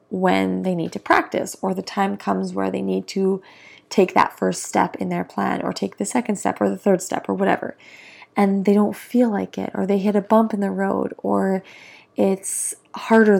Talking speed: 215 wpm